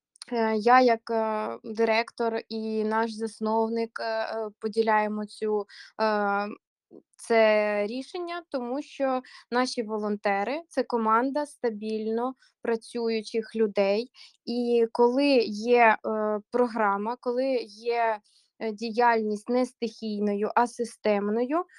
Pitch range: 210-235 Hz